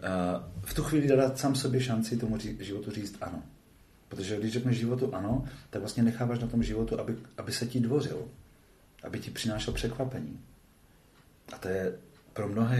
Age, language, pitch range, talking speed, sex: 40-59, Czech, 95-120 Hz, 170 wpm, male